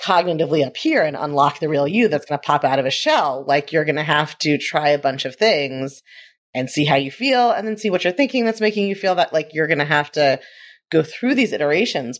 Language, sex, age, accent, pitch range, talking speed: English, female, 30-49, American, 145-195 Hz, 260 wpm